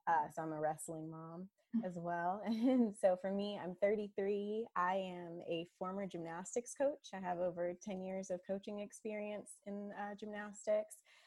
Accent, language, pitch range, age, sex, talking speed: American, English, 165-210 Hz, 20-39, female, 165 wpm